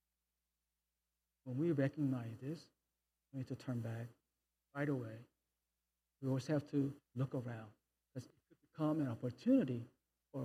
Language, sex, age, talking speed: English, male, 60-79, 130 wpm